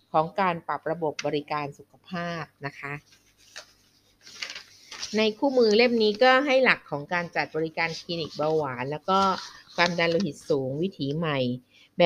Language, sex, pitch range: Thai, female, 150-190 Hz